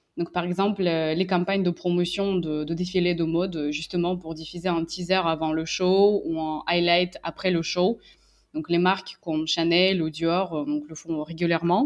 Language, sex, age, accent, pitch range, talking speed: English, female, 20-39, French, 170-195 Hz, 185 wpm